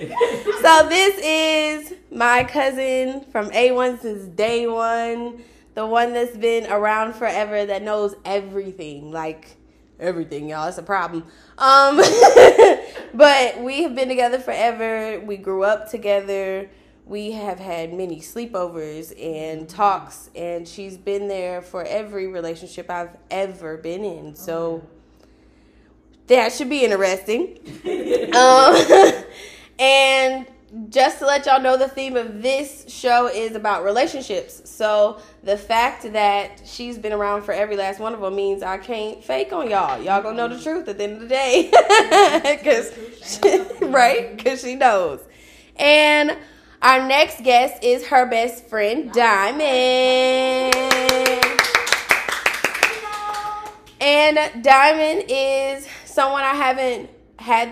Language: English